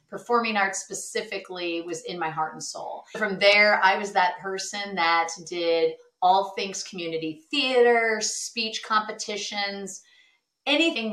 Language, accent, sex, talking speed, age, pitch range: English, American, female, 130 wpm, 30-49, 165-215 Hz